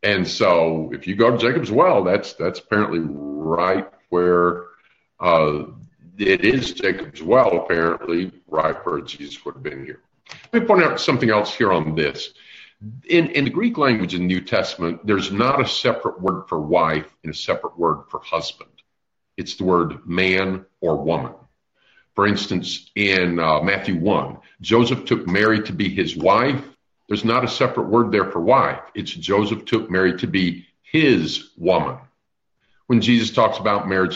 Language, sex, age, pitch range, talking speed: English, male, 50-69, 90-115 Hz, 170 wpm